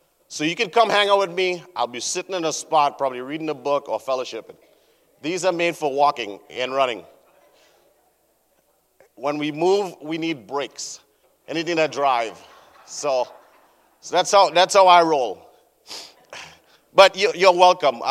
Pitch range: 135-180 Hz